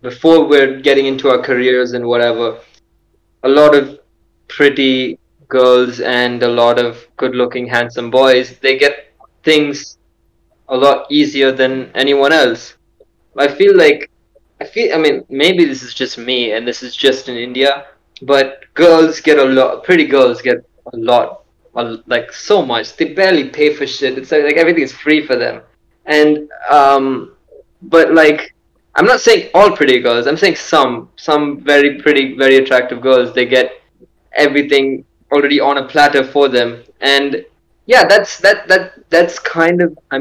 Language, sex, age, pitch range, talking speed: English, male, 20-39, 125-150 Hz, 165 wpm